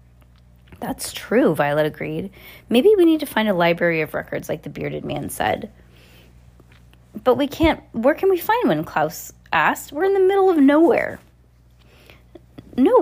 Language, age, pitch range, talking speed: English, 20-39, 175-260 Hz, 160 wpm